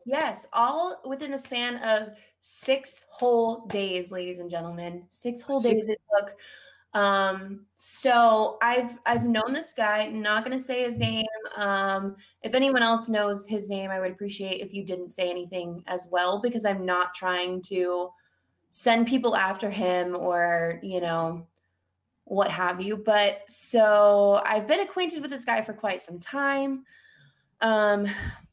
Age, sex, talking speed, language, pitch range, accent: 20-39, female, 155 wpm, English, 185-255 Hz, American